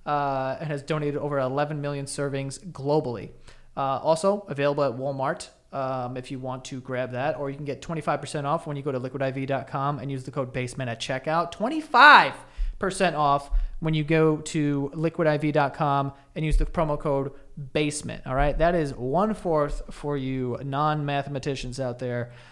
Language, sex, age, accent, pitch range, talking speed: English, male, 30-49, American, 135-170 Hz, 170 wpm